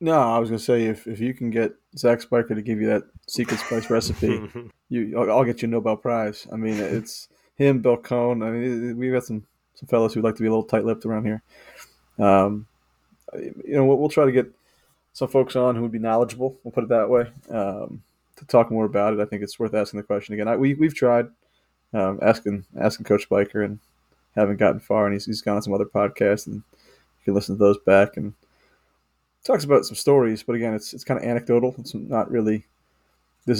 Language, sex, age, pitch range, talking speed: English, male, 20-39, 100-120 Hz, 230 wpm